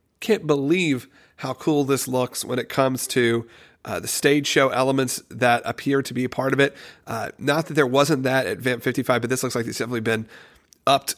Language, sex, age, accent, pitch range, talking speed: English, male, 40-59, American, 130-155 Hz, 215 wpm